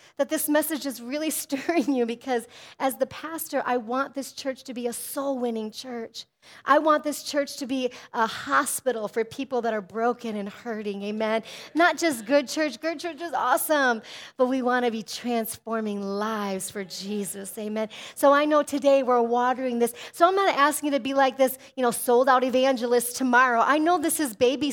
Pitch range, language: 225-290 Hz, English